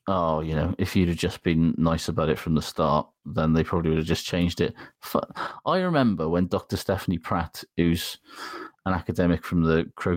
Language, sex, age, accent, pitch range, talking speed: English, male, 30-49, British, 90-115 Hz, 200 wpm